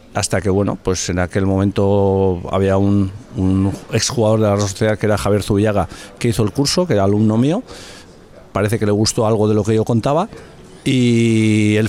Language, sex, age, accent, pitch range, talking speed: Spanish, male, 50-69, Spanish, 100-125 Hz, 190 wpm